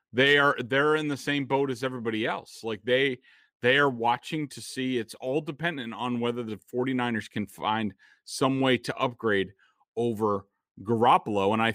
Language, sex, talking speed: English, male, 170 wpm